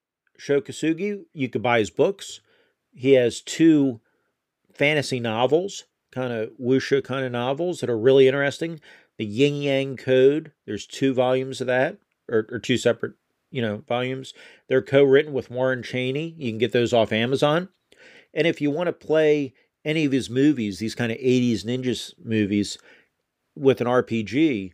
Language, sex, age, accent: English, male, 40-59, American